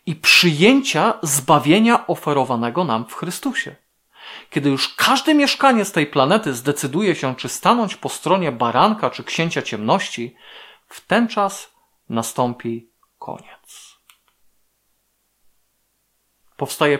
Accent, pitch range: native, 135-215 Hz